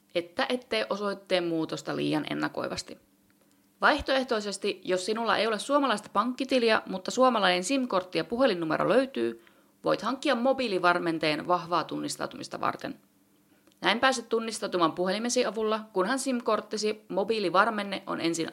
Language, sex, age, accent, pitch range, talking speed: Finnish, female, 30-49, native, 170-225 Hz, 115 wpm